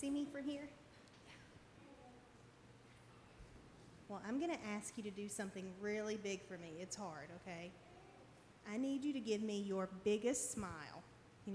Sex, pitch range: female, 195-240 Hz